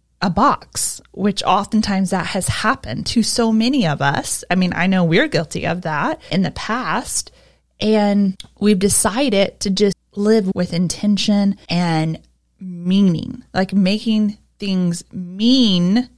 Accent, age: American, 20-39